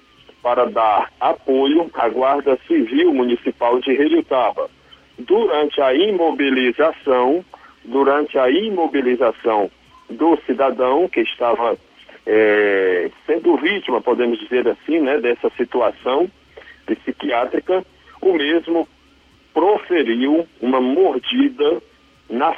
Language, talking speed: Portuguese, 100 wpm